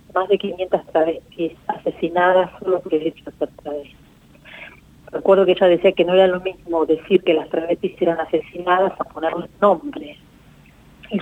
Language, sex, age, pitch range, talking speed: Spanish, female, 40-59, 160-190 Hz, 155 wpm